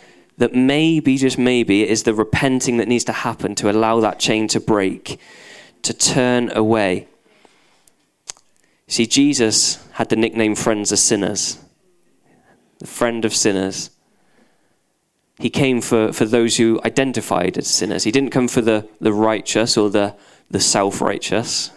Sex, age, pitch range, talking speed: male, 10-29, 110-130 Hz, 145 wpm